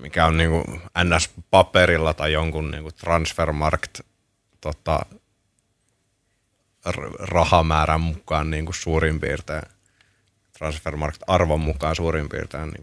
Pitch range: 80-95 Hz